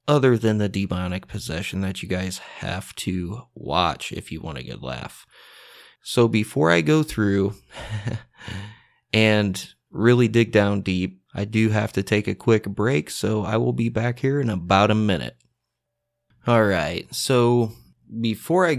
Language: English